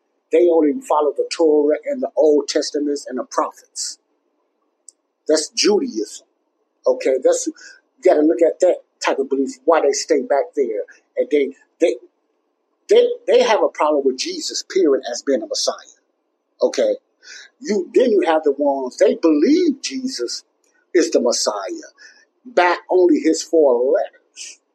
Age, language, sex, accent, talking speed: 50-69, English, male, American, 155 wpm